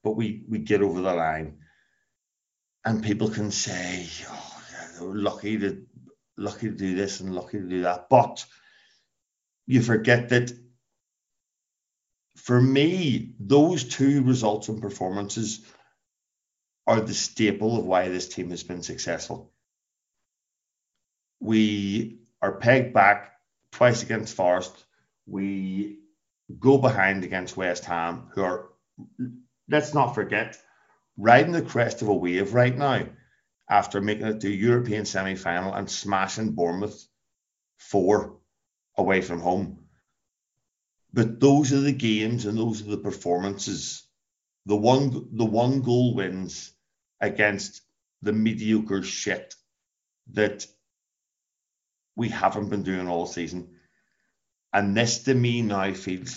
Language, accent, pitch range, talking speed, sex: English, British, 95-115 Hz, 125 wpm, male